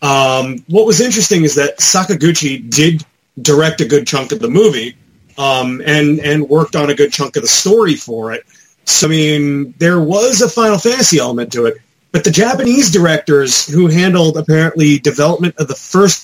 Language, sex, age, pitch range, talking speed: English, male, 30-49, 145-190 Hz, 185 wpm